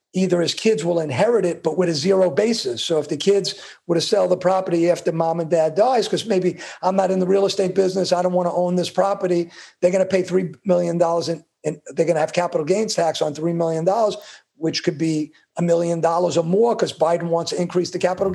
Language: English